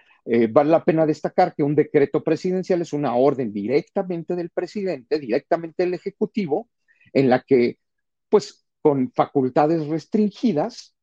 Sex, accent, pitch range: male, Mexican, 130-180 Hz